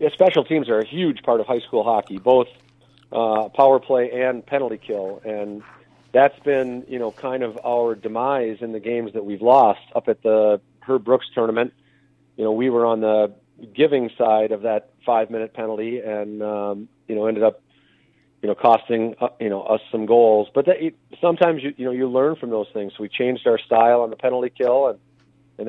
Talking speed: 205 wpm